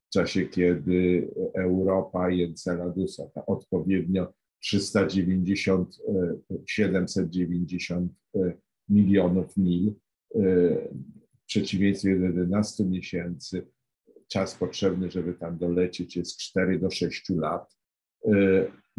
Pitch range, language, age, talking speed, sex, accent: 90-110 Hz, Polish, 50-69, 80 wpm, male, native